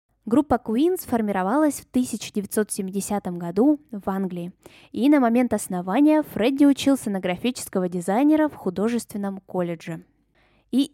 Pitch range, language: 190-250 Hz, Russian